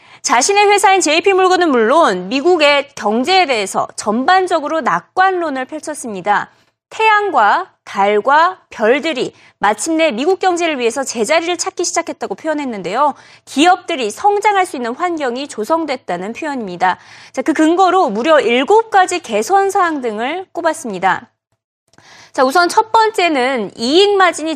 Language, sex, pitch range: Korean, female, 235-365 Hz